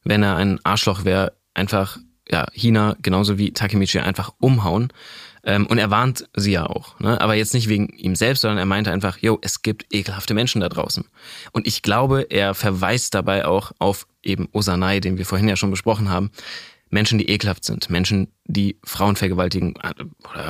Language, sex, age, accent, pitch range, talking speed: German, male, 20-39, German, 95-115 Hz, 190 wpm